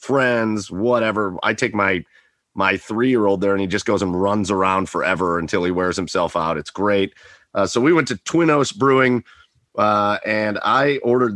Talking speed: 180 wpm